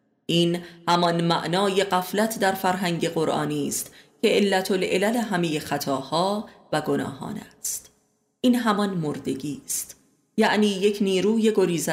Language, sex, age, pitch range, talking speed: Persian, female, 30-49, 170-205 Hz, 120 wpm